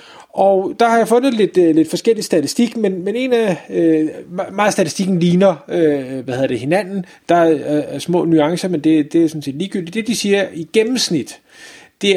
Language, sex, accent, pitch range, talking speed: Danish, male, native, 165-205 Hz, 195 wpm